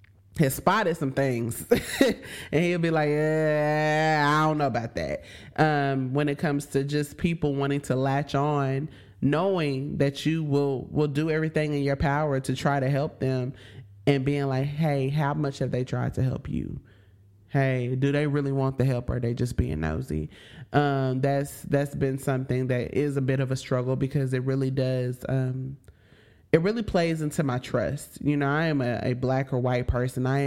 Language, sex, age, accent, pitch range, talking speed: English, male, 20-39, American, 125-150 Hz, 195 wpm